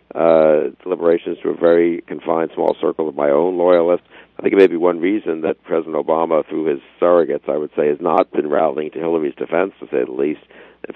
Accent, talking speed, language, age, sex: American, 220 wpm, English, 60-79, male